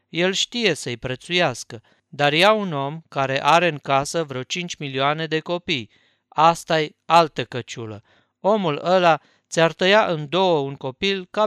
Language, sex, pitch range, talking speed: Romanian, male, 135-175 Hz, 150 wpm